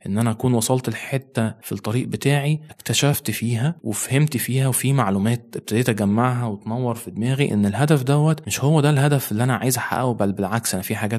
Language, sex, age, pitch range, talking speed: Arabic, male, 20-39, 105-130 Hz, 190 wpm